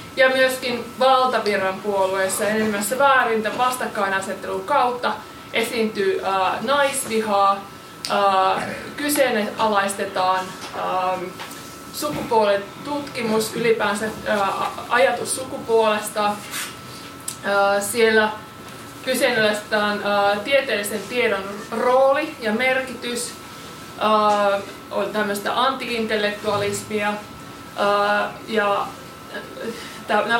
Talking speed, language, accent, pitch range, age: 75 wpm, Finnish, native, 200-245 Hz, 20-39